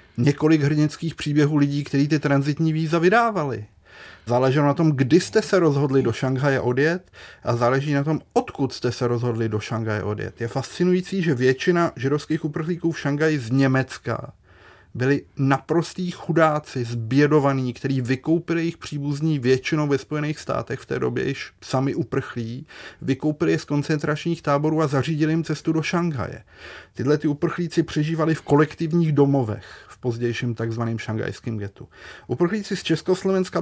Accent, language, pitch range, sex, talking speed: native, Czech, 125-160 Hz, male, 150 wpm